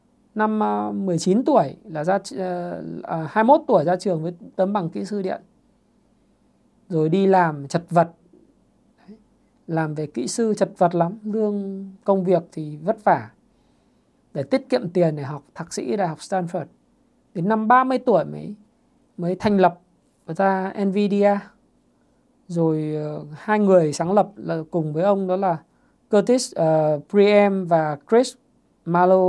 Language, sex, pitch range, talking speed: Vietnamese, male, 170-220 Hz, 155 wpm